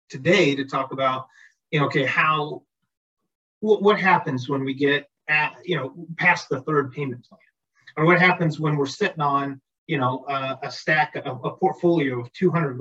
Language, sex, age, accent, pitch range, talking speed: English, male, 30-49, American, 135-170 Hz, 185 wpm